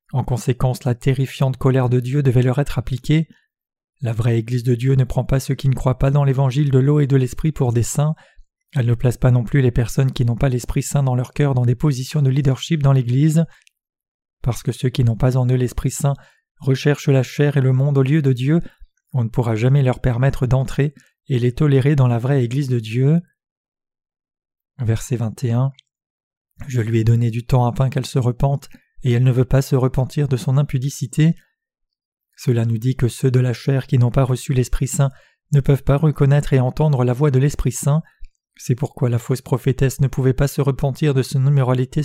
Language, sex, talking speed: French, male, 215 wpm